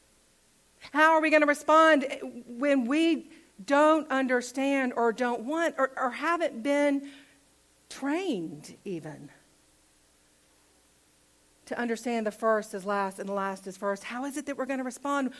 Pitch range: 210-295 Hz